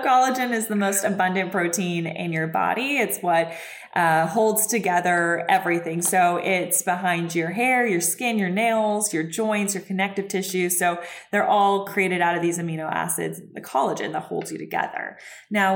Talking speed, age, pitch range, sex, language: 170 wpm, 20-39, 175-200 Hz, female, English